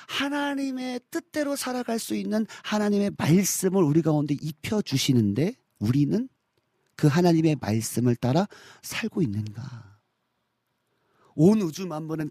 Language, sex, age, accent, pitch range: Korean, male, 40-59, native, 120-195 Hz